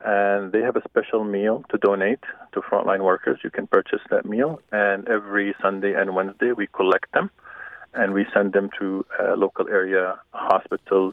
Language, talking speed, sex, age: English, 180 wpm, male, 40-59